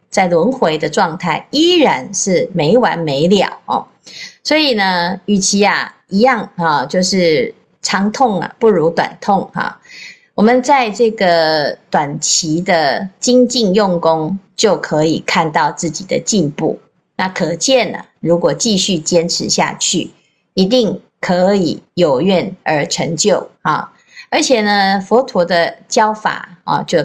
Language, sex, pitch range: Chinese, female, 170-230 Hz